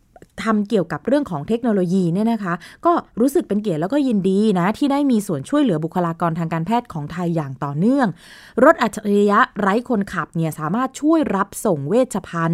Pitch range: 170-245 Hz